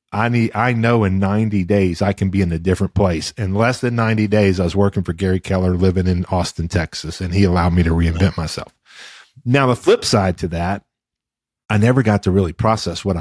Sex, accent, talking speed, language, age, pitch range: male, American, 225 wpm, English, 40-59, 90-110 Hz